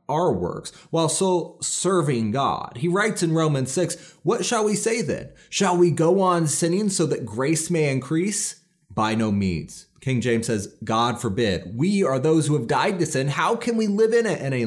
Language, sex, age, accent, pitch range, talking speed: English, male, 30-49, American, 120-180 Hz, 200 wpm